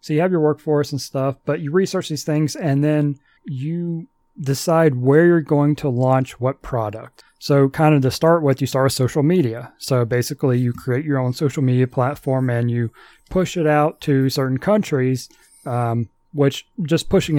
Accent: American